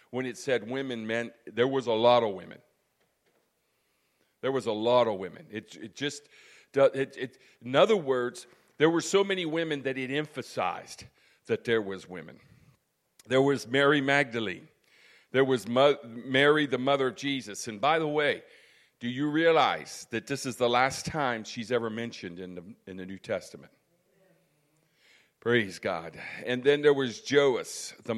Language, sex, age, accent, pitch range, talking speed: English, male, 50-69, American, 120-150 Hz, 170 wpm